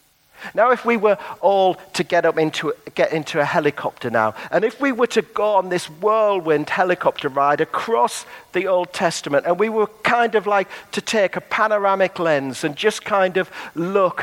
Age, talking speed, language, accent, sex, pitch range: 50-69, 190 wpm, English, British, male, 145-200 Hz